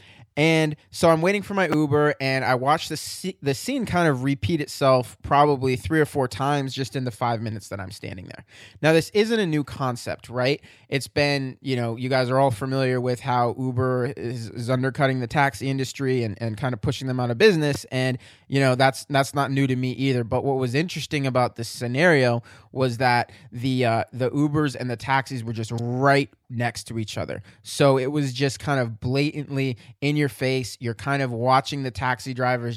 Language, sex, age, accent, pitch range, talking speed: English, male, 20-39, American, 120-140 Hz, 210 wpm